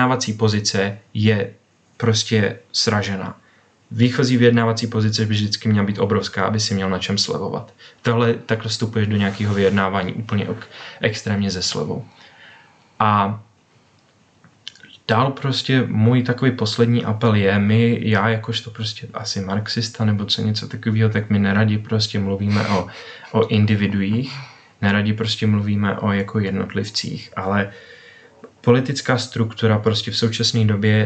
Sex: male